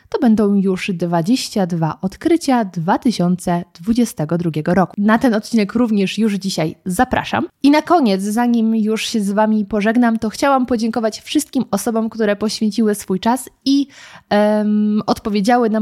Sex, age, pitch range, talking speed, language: female, 20-39, 190-240 Hz, 135 wpm, Polish